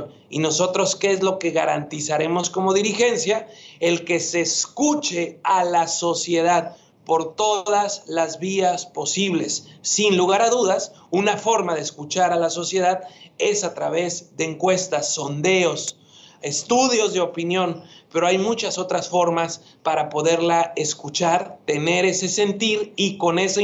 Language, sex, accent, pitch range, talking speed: Spanish, male, Mexican, 165-205 Hz, 140 wpm